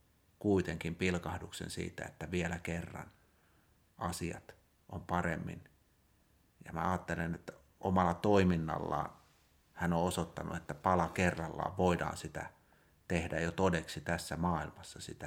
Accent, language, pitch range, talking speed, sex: native, Finnish, 80-95 Hz, 115 wpm, male